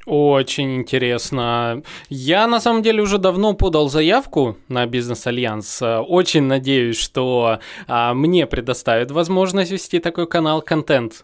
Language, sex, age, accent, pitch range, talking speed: Russian, male, 20-39, native, 130-185 Hz, 115 wpm